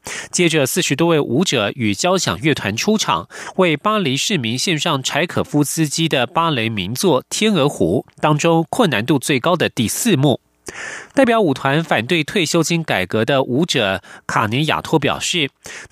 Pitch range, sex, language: 135-185 Hz, male, Chinese